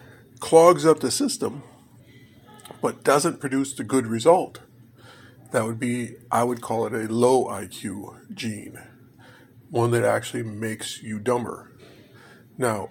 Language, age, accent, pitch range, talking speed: English, 50-69, American, 120-135 Hz, 130 wpm